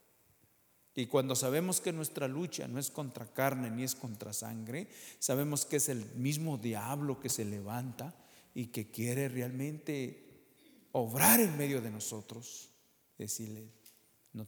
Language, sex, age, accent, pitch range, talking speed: English, male, 50-69, Mexican, 110-140 Hz, 140 wpm